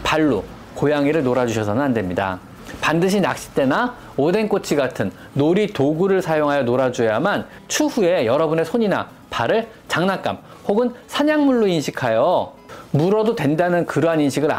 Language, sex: Korean, male